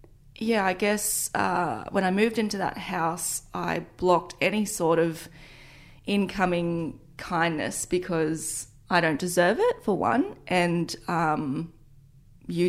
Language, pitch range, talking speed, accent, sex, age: English, 155-180 Hz, 130 wpm, Australian, female, 20-39